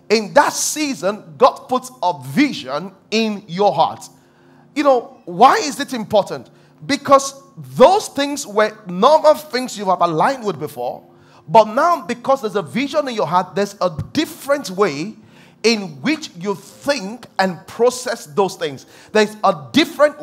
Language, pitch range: English, 180-250 Hz